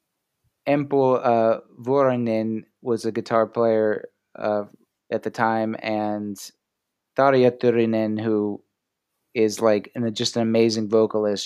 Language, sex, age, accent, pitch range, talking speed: English, male, 30-49, American, 110-125 Hz, 110 wpm